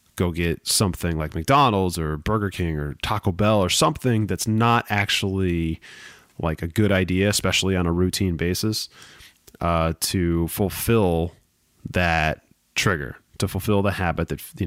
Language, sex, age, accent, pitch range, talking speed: English, male, 30-49, American, 80-105 Hz, 145 wpm